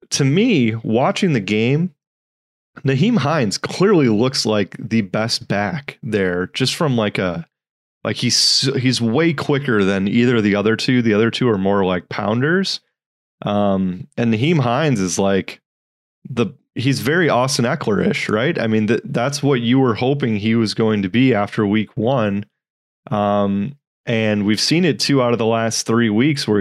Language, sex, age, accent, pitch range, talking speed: English, male, 30-49, American, 105-135 Hz, 170 wpm